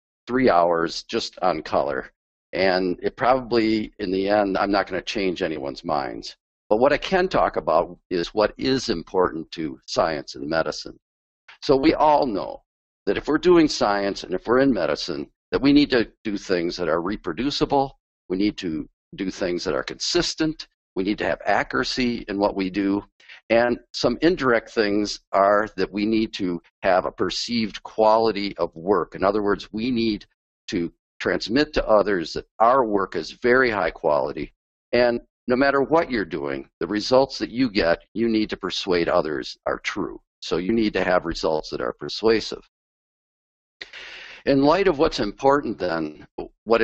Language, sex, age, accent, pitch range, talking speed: English, male, 50-69, American, 90-130 Hz, 175 wpm